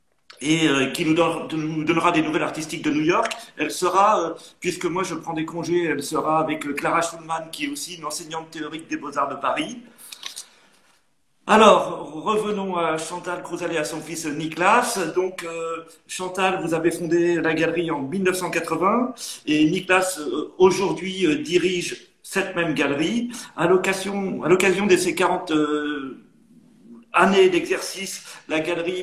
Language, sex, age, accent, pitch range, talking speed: French, male, 40-59, French, 160-210 Hz, 145 wpm